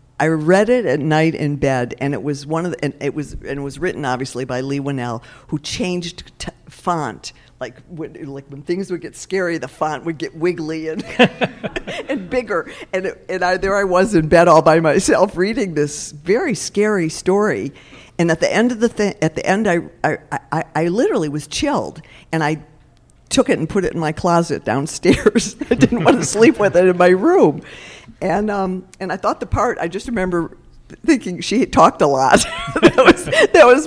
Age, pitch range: 50-69, 140-180 Hz